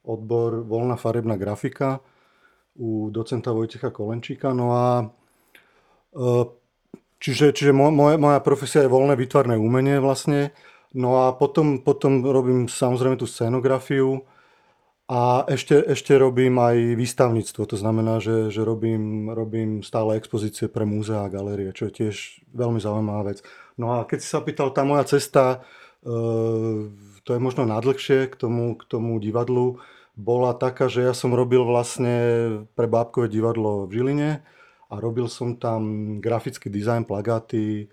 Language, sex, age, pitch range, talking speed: Slovak, male, 30-49, 110-130 Hz, 140 wpm